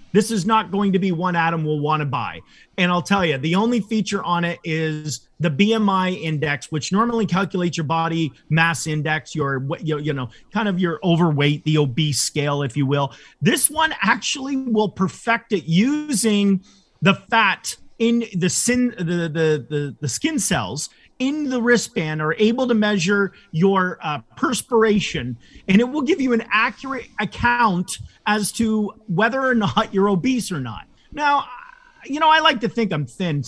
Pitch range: 160-220 Hz